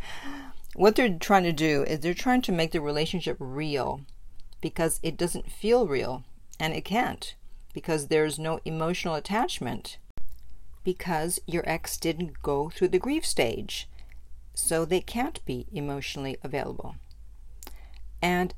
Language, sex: English, female